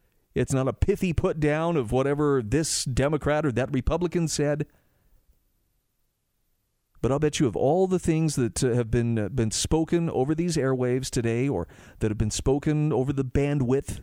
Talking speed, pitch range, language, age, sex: 165 wpm, 115-150 Hz, English, 40-59, male